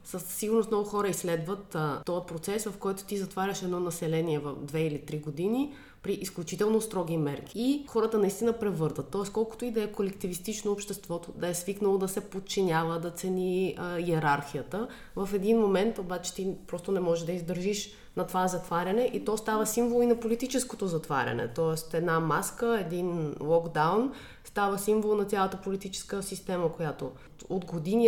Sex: female